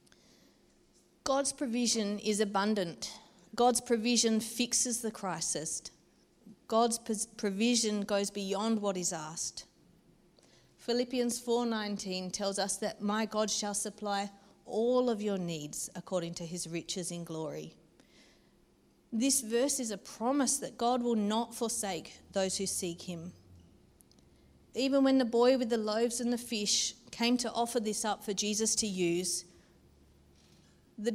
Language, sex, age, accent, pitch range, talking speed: English, female, 40-59, Australian, 185-235 Hz, 135 wpm